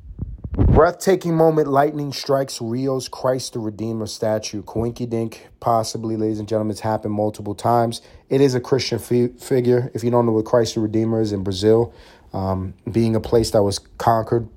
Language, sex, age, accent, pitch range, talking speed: English, male, 30-49, American, 95-115 Hz, 175 wpm